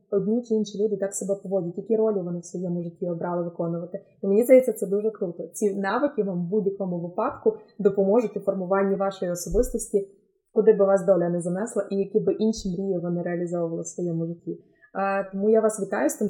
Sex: female